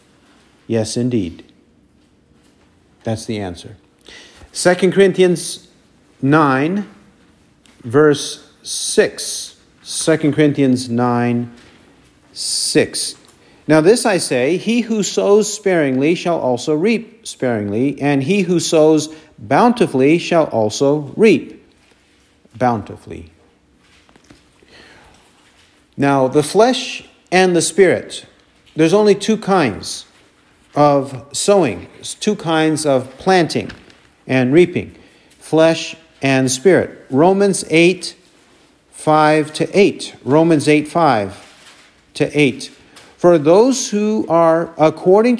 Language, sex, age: English, male, 50-69